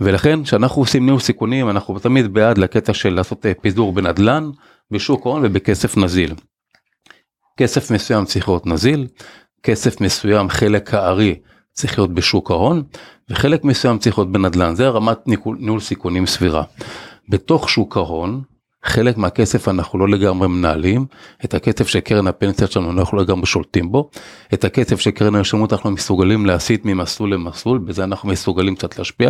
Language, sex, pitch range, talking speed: Hebrew, male, 95-125 Hz, 145 wpm